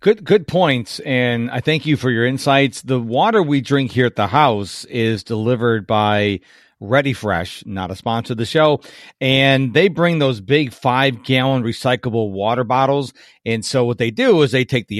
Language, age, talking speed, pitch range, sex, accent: English, 40-59, 190 wpm, 115-140 Hz, male, American